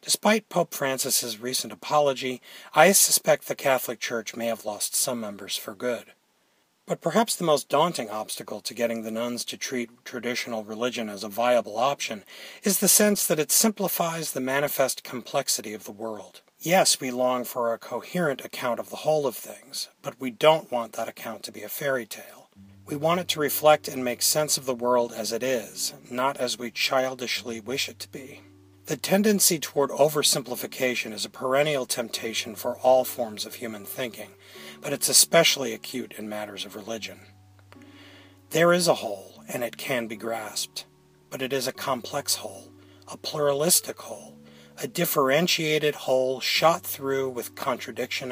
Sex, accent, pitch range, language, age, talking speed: male, American, 110-150 Hz, English, 40-59, 175 wpm